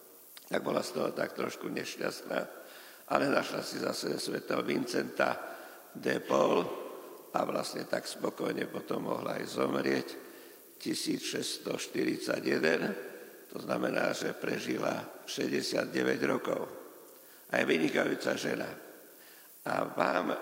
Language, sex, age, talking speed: Slovak, male, 60-79, 110 wpm